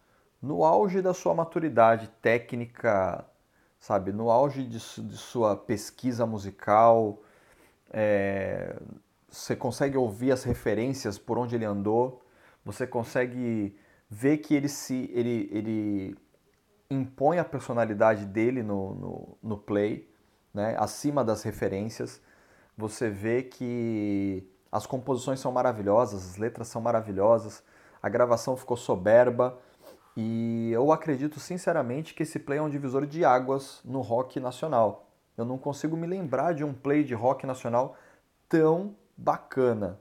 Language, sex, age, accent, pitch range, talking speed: Portuguese, male, 30-49, Brazilian, 110-135 Hz, 125 wpm